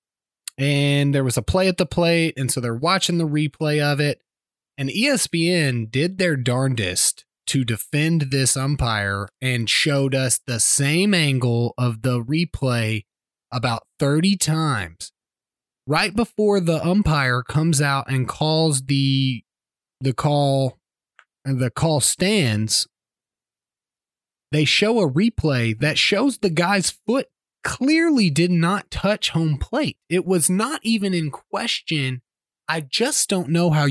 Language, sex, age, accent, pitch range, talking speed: English, male, 20-39, American, 125-170 Hz, 140 wpm